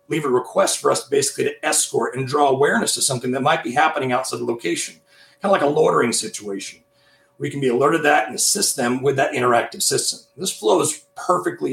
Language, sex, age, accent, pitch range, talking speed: English, male, 40-59, American, 125-150 Hz, 215 wpm